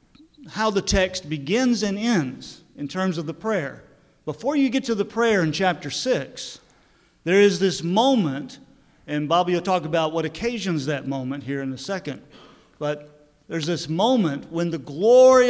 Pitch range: 155-225 Hz